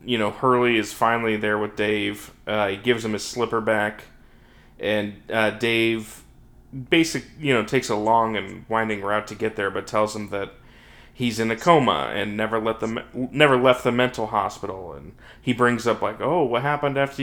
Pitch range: 105-120 Hz